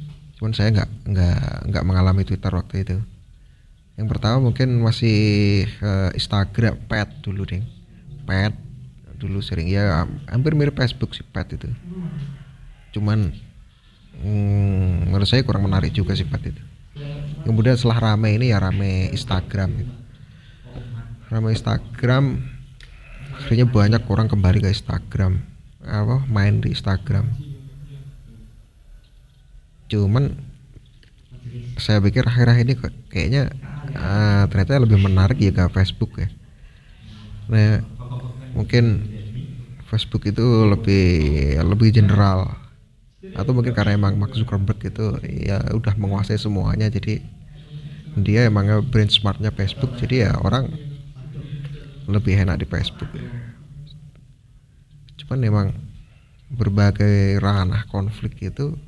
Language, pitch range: Indonesian, 100-130 Hz